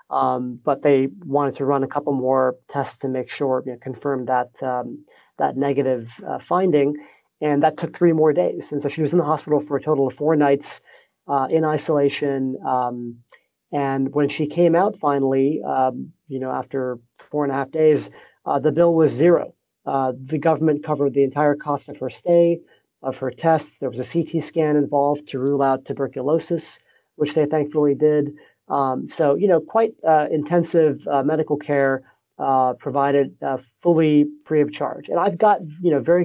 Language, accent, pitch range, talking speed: English, American, 135-155 Hz, 190 wpm